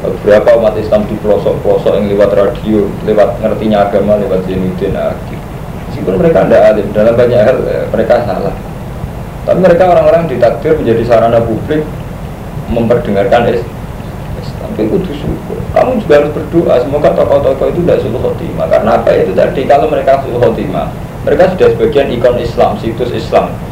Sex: male